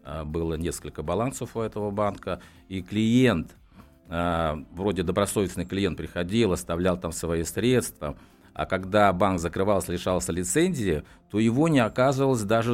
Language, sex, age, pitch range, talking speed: Russian, male, 50-69, 80-105 Hz, 125 wpm